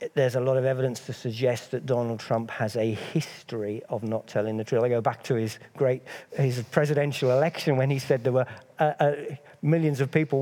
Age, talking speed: 50-69, 215 wpm